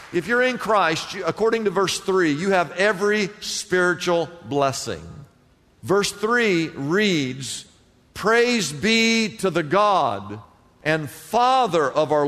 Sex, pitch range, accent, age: male, 155-210 Hz, American, 50-69